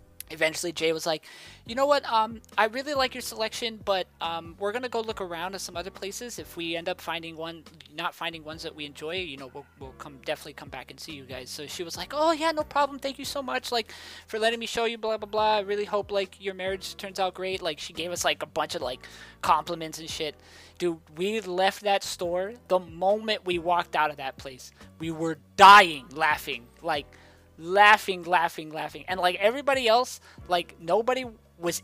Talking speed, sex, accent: 220 wpm, male, American